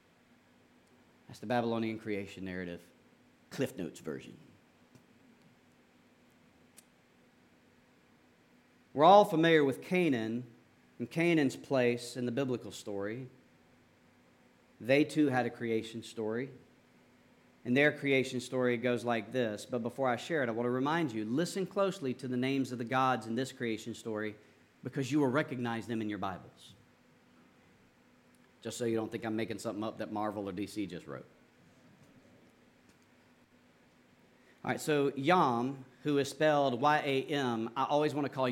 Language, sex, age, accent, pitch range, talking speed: English, male, 40-59, American, 115-165 Hz, 140 wpm